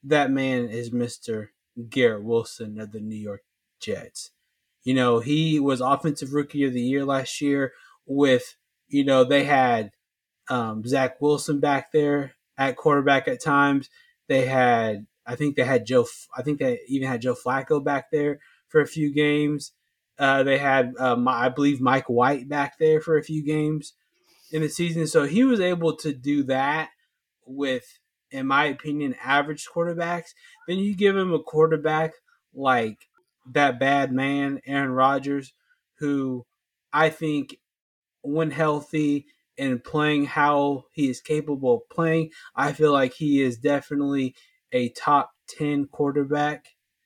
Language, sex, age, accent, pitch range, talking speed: English, male, 20-39, American, 135-155 Hz, 155 wpm